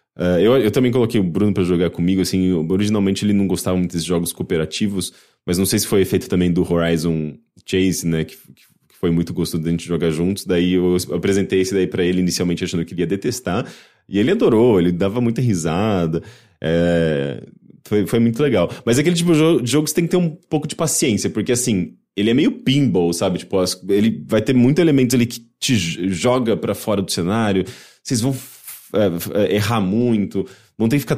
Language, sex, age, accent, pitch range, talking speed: English, male, 20-39, Brazilian, 90-125 Hz, 215 wpm